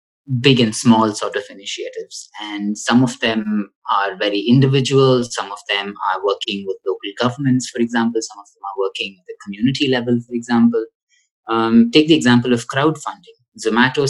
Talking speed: 175 wpm